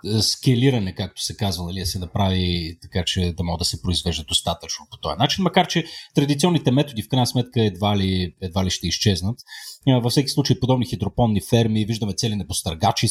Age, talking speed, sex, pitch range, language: 30-49, 180 wpm, male, 95-130 Hz, Bulgarian